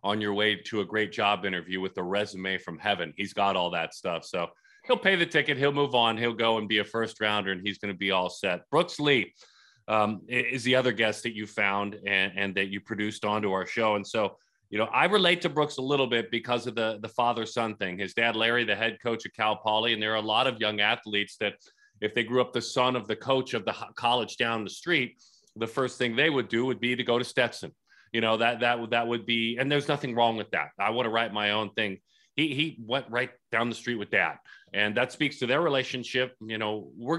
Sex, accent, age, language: male, American, 30-49, English